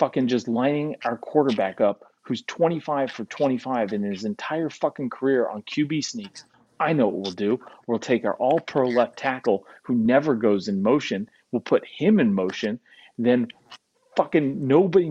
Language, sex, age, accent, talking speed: English, male, 30-49, American, 170 wpm